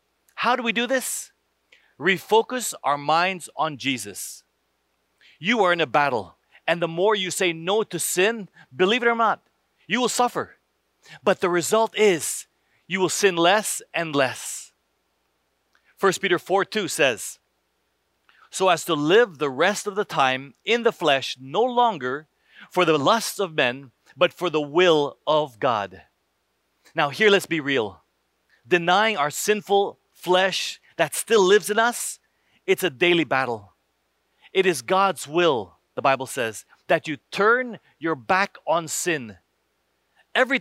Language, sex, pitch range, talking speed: English, male, 140-210 Hz, 150 wpm